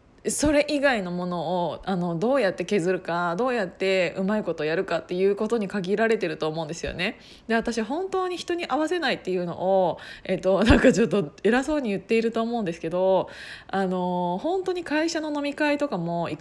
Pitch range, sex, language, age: 180-260 Hz, female, Japanese, 20-39